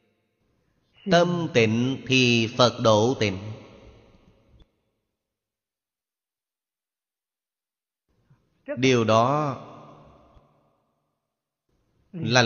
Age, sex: 30-49, male